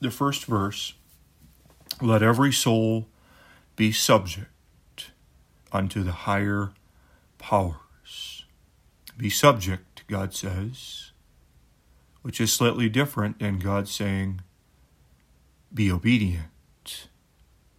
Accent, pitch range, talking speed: American, 80-110 Hz, 85 wpm